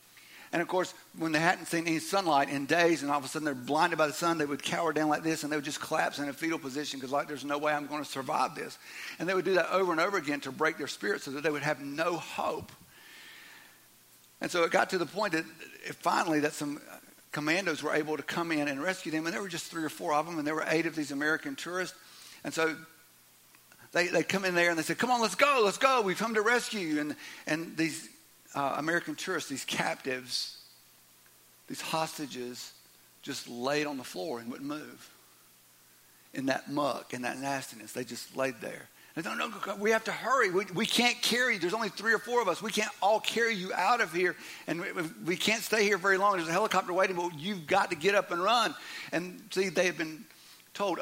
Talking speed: 240 wpm